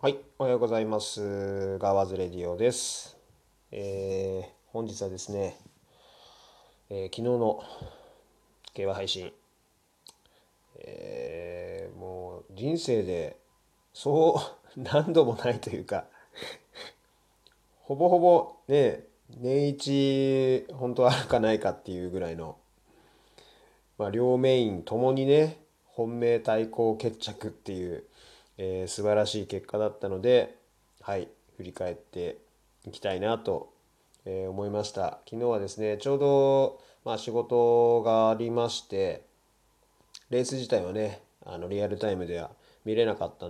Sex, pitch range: male, 95-135 Hz